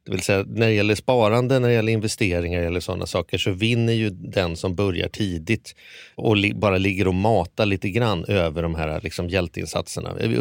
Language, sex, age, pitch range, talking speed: Swedish, male, 30-49, 95-120 Hz, 200 wpm